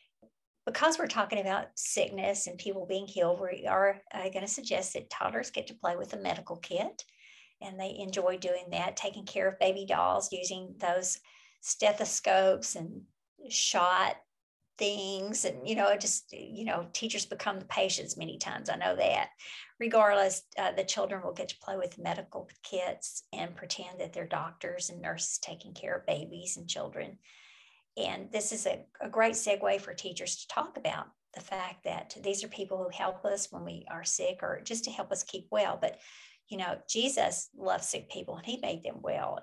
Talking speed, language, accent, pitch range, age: 185 wpm, English, American, 190-225 Hz, 50-69